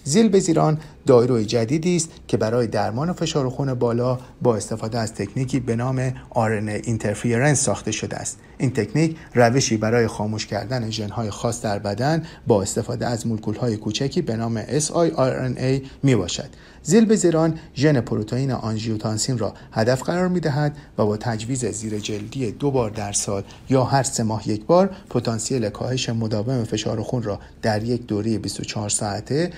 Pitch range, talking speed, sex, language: 110-150 Hz, 160 wpm, male, Persian